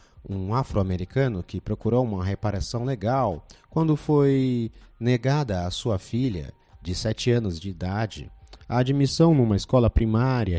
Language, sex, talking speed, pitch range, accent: Portuguese, male, 130 wpm, 90-120 Hz, Brazilian